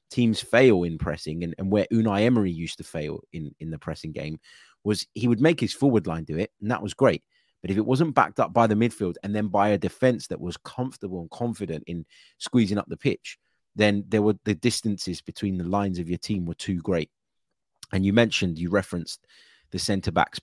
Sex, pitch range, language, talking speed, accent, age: male, 85-115 Hz, English, 220 wpm, British, 30-49